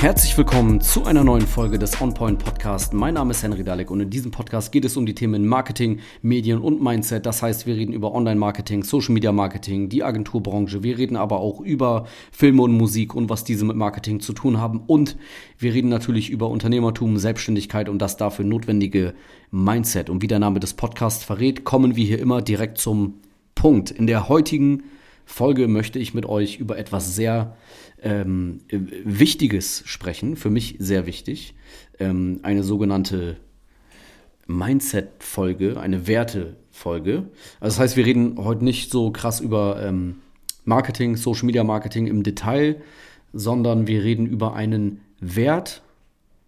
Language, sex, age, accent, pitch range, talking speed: German, male, 40-59, German, 100-120 Hz, 155 wpm